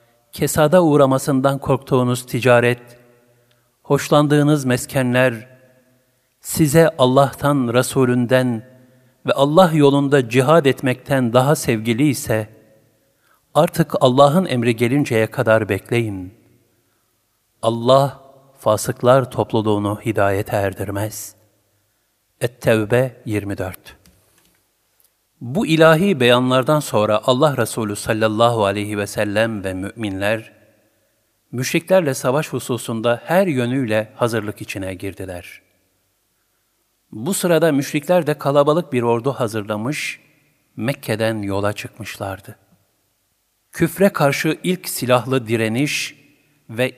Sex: male